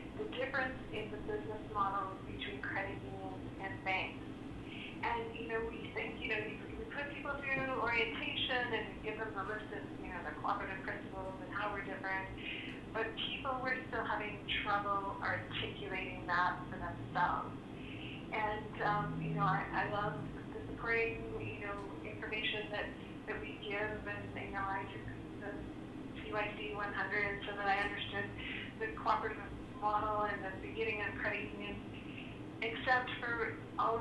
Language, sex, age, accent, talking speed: English, female, 30-49, American, 160 wpm